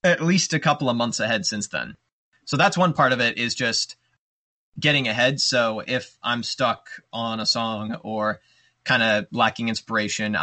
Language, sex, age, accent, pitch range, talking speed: English, male, 20-39, American, 110-135 Hz, 180 wpm